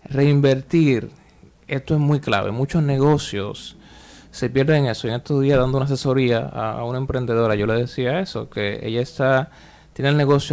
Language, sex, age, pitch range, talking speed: Spanish, male, 20-39, 120-145 Hz, 180 wpm